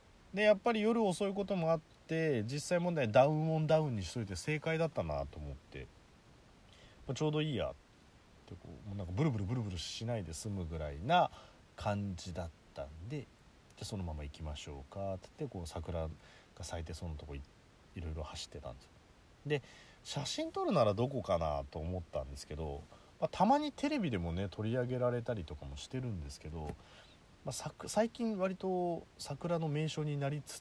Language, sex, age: Japanese, male, 30-49